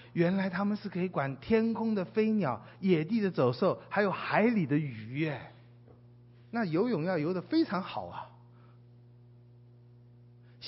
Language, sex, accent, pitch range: Chinese, male, native, 120-165 Hz